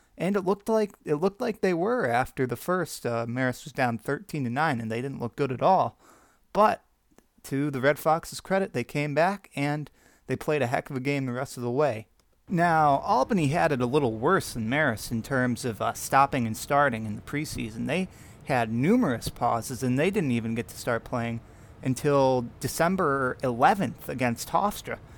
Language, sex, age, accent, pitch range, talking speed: English, male, 30-49, American, 115-145 Hz, 200 wpm